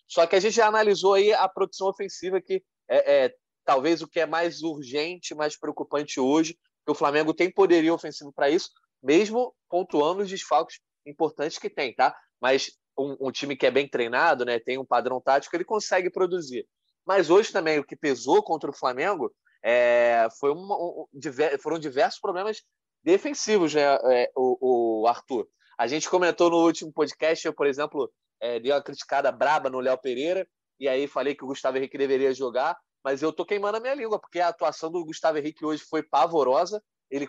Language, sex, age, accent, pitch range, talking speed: Portuguese, male, 20-39, Brazilian, 145-190 Hz, 195 wpm